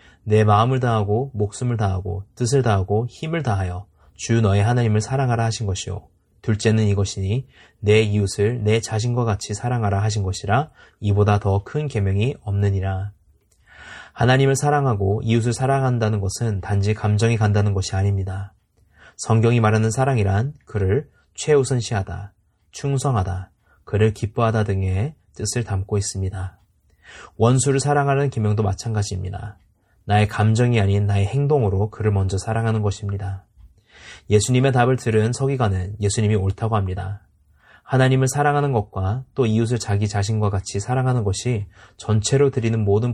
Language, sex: Korean, male